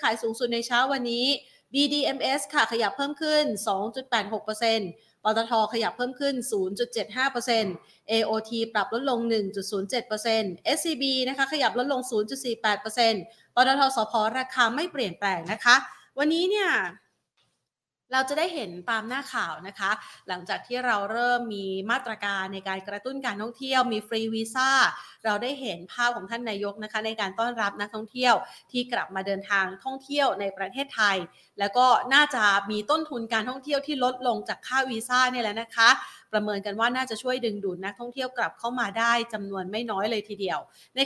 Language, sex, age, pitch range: Thai, female, 30-49, 205-255 Hz